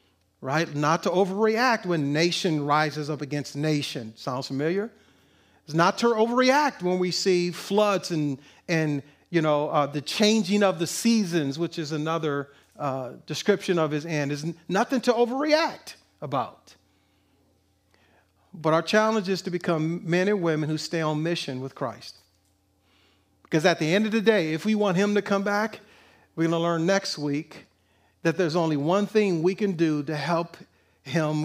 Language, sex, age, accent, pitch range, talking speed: English, male, 40-59, American, 135-190 Hz, 170 wpm